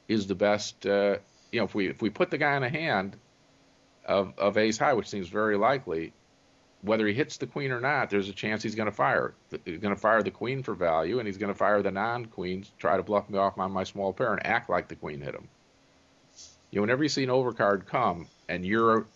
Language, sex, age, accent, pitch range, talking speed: English, male, 50-69, American, 95-110 Hz, 250 wpm